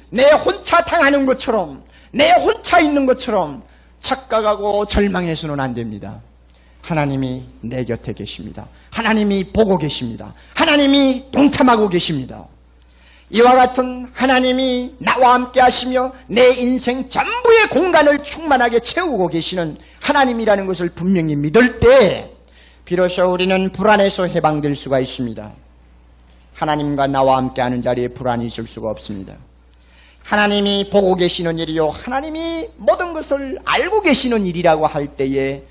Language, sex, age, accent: Korean, male, 40-59, native